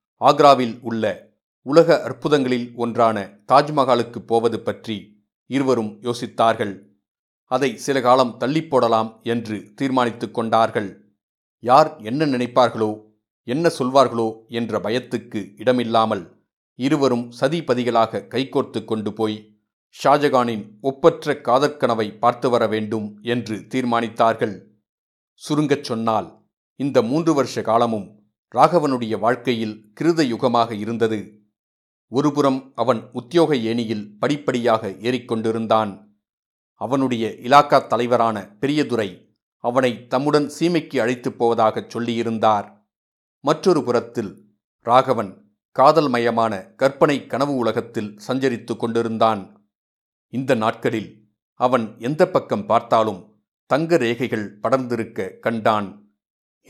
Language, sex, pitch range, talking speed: Tamil, male, 110-130 Hz, 90 wpm